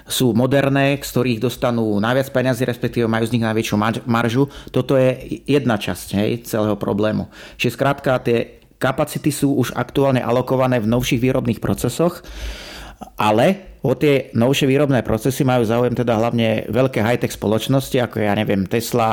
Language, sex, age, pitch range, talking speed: Slovak, male, 30-49, 115-135 Hz, 155 wpm